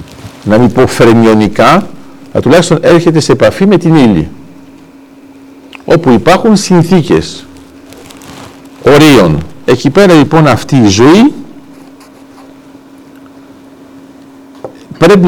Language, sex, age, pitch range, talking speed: Greek, male, 50-69, 130-210 Hz, 90 wpm